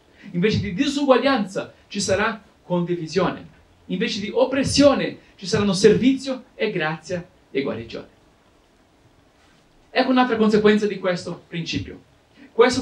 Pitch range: 190-250 Hz